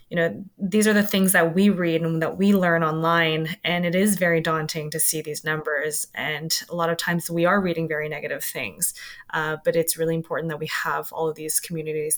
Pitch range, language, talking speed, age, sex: 160-185 Hz, English, 225 wpm, 20-39, female